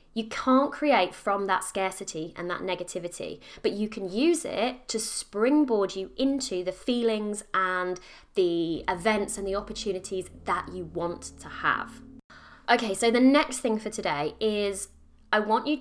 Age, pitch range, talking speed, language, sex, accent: 20-39, 185-245 Hz, 160 wpm, English, female, British